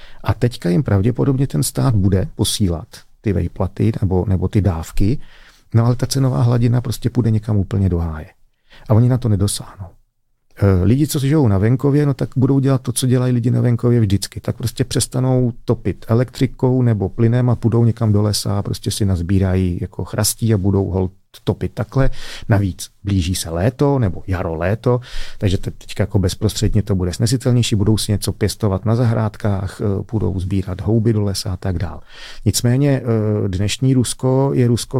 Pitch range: 100-125 Hz